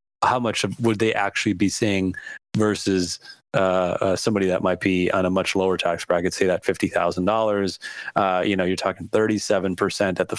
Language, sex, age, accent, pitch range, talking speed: English, male, 30-49, American, 95-115 Hz, 175 wpm